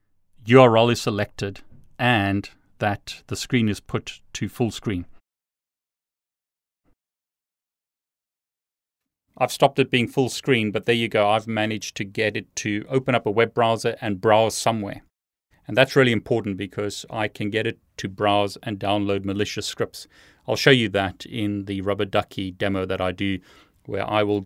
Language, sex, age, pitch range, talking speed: English, male, 30-49, 100-115 Hz, 160 wpm